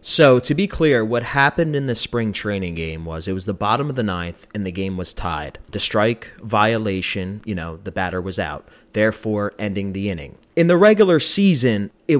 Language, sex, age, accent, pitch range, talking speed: English, male, 30-49, American, 95-125 Hz, 205 wpm